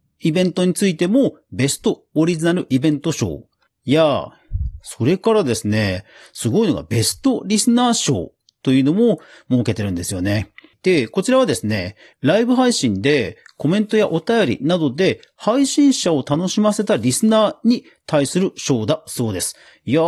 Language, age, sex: Japanese, 40-59, male